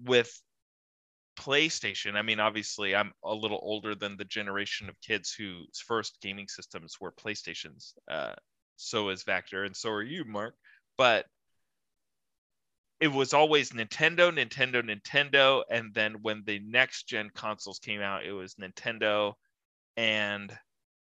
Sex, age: male, 20-39